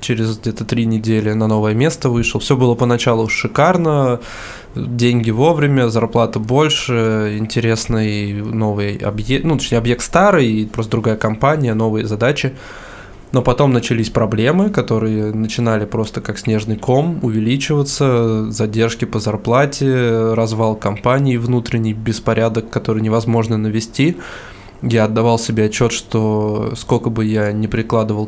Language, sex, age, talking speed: Russian, male, 20-39, 125 wpm